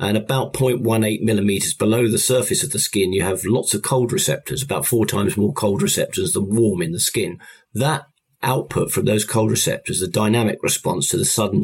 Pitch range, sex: 100-125 Hz, male